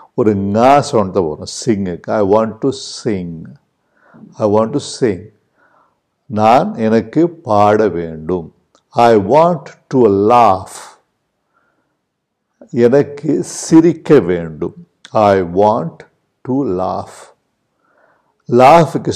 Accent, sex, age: native, male, 50-69